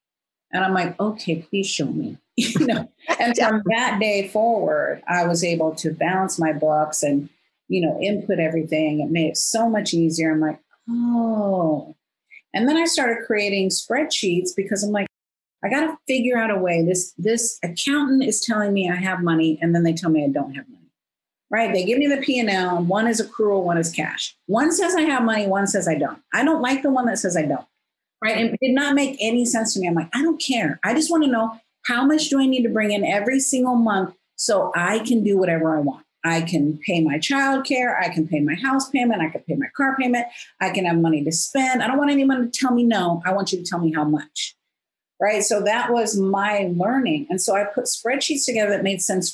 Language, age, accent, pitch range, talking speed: English, 40-59, American, 170-240 Hz, 235 wpm